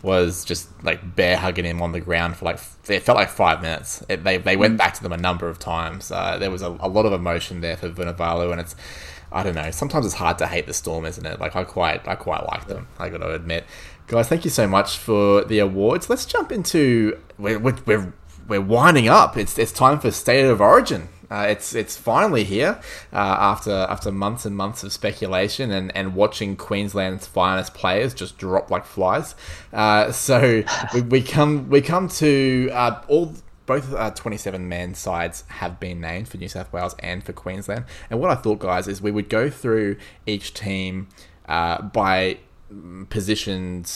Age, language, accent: 20-39, English, Australian